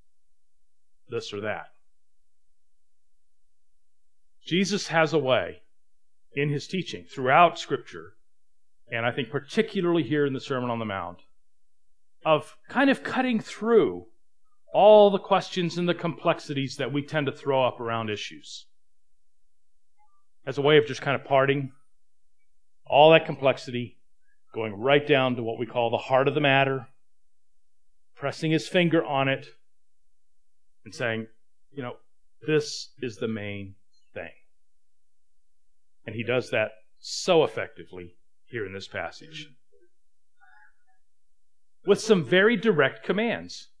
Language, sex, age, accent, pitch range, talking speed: English, male, 40-59, American, 120-165 Hz, 130 wpm